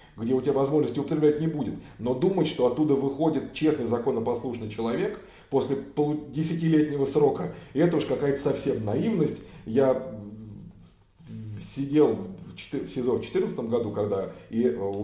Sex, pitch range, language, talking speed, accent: male, 135-165 Hz, Russian, 140 wpm, native